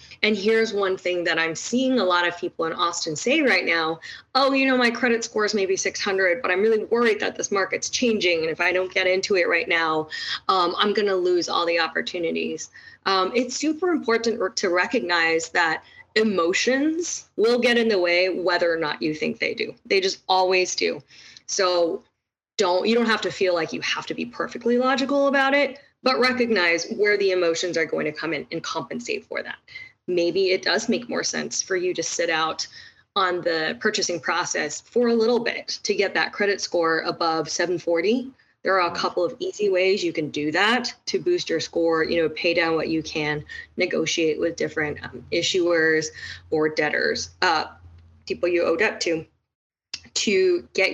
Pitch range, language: 165-230 Hz, English